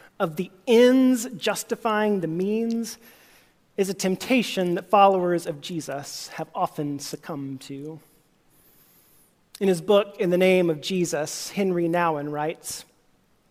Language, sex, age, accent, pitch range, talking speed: English, male, 40-59, American, 170-220 Hz, 125 wpm